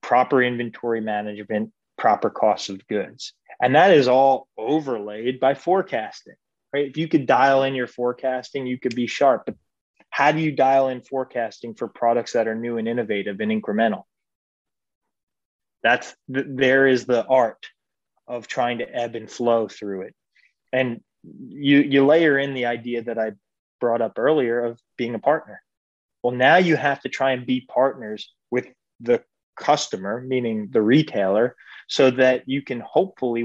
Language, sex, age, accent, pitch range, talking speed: English, male, 20-39, American, 115-135 Hz, 165 wpm